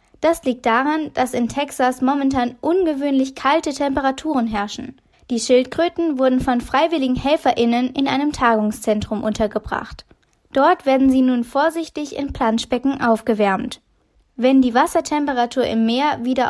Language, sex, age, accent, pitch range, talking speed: German, female, 20-39, German, 235-295 Hz, 125 wpm